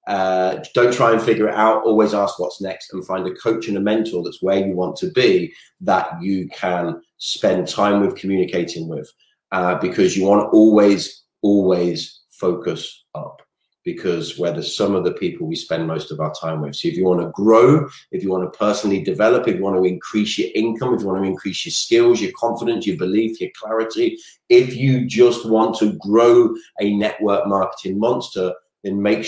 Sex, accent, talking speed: male, British, 190 wpm